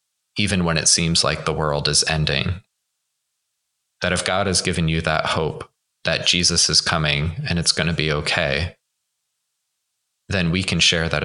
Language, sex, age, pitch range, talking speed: English, male, 20-39, 80-95 Hz, 170 wpm